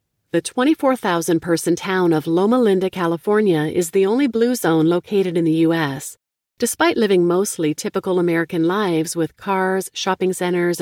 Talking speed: 145 wpm